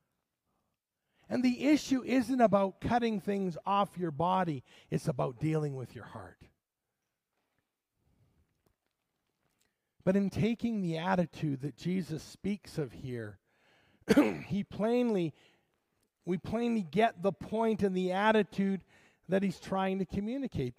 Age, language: 50-69, English